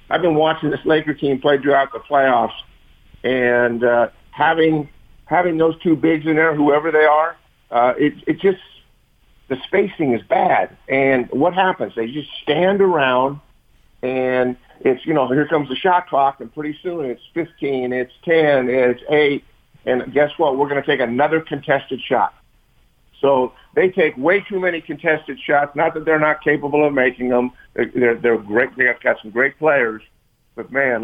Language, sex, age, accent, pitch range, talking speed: English, male, 50-69, American, 125-155 Hz, 175 wpm